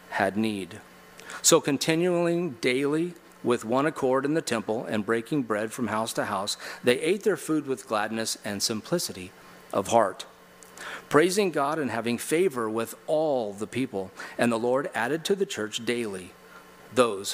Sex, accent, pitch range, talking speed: male, American, 110-135 Hz, 160 wpm